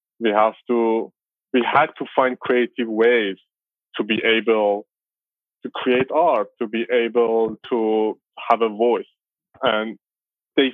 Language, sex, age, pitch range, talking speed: English, male, 20-39, 115-135 Hz, 135 wpm